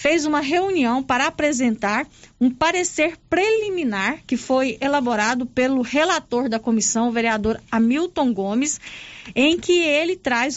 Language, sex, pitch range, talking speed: Portuguese, female, 235-295 Hz, 130 wpm